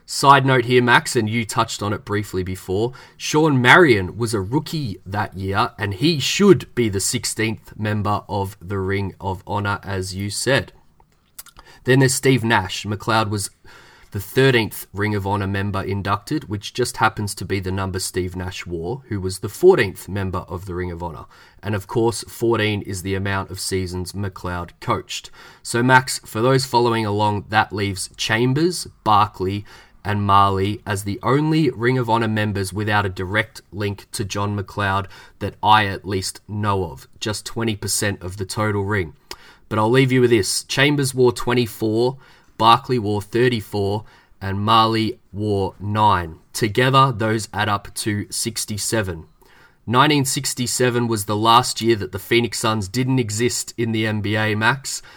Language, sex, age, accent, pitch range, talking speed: English, male, 20-39, Australian, 100-120 Hz, 165 wpm